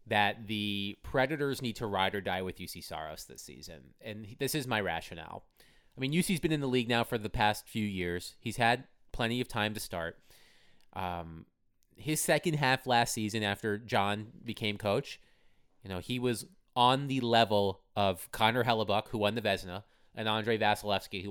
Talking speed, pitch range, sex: 185 wpm, 105-130 Hz, male